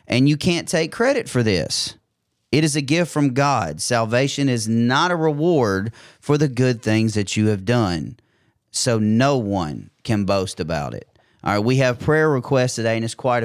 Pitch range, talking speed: 110-135 Hz, 190 wpm